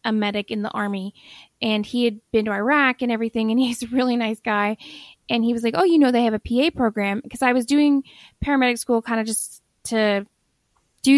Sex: female